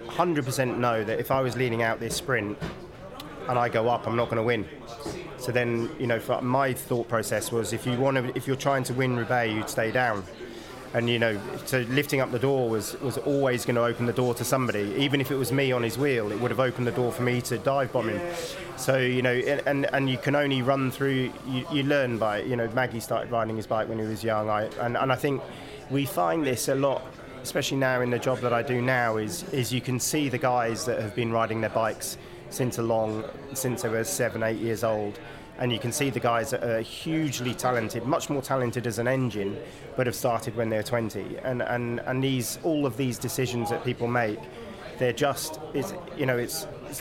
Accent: British